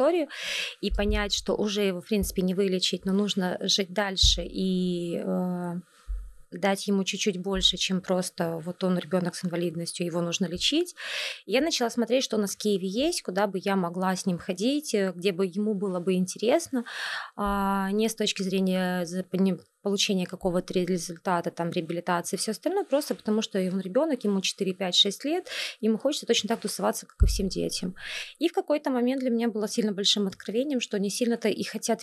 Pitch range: 185-225 Hz